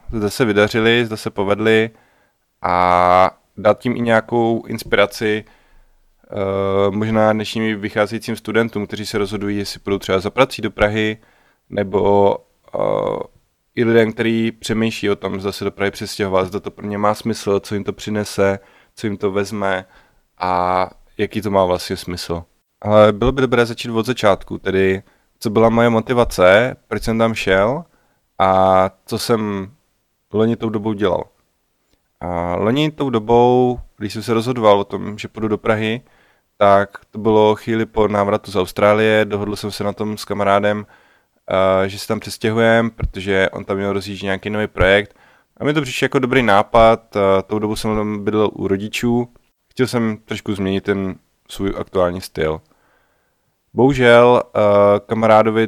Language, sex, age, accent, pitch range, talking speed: Czech, male, 20-39, native, 100-115 Hz, 155 wpm